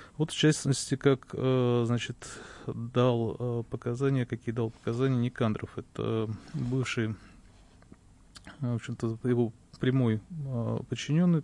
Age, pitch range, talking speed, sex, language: 30-49, 115-140 Hz, 90 wpm, male, Russian